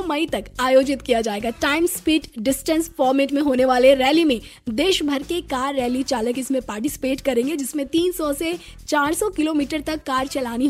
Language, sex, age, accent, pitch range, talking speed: Hindi, female, 20-39, native, 250-315 Hz, 175 wpm